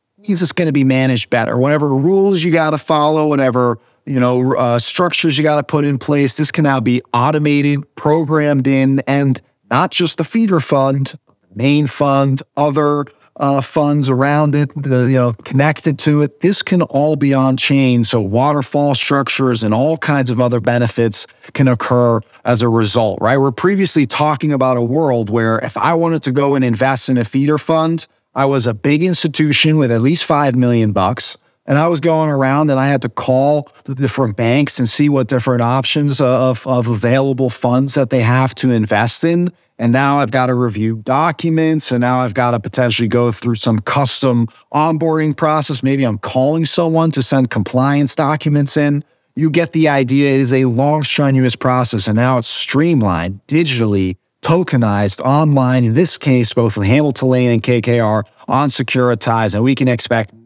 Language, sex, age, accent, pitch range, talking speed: English, male, 30-49, American, 125-150 Hz, 185 wpm